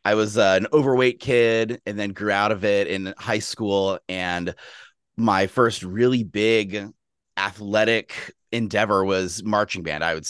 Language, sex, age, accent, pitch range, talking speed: English, male, 30-49, American, 95-115 Hz, 155 wpm